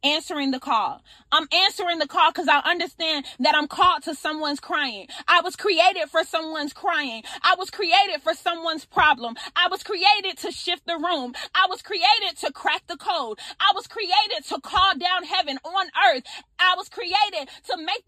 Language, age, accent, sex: English, 30-49, American, female